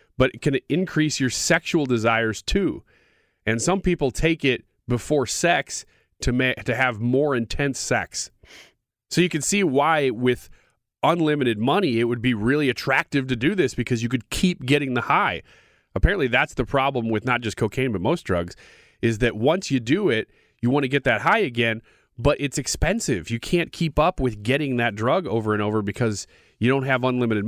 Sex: male